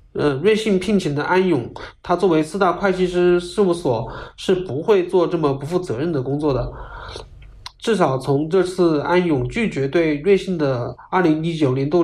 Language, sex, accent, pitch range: Chinese, male, native, 140-180 Hz